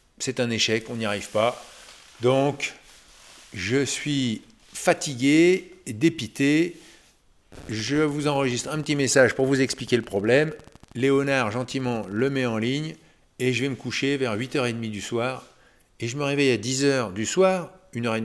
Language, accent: French, French